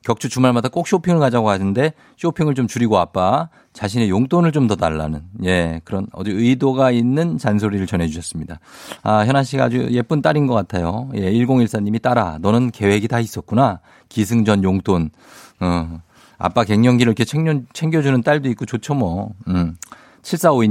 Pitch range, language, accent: 105-170 Hz, Korean, native